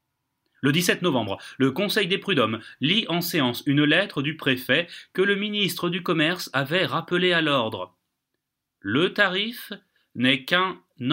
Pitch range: 120-165 Hz